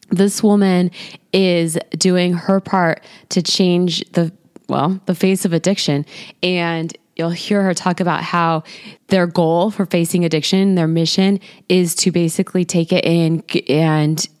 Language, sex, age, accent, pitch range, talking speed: English, female, 20-39, American, 170-195 Hz, 145 wpm